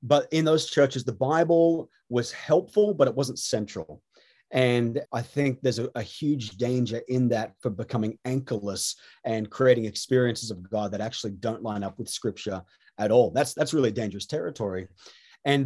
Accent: Australian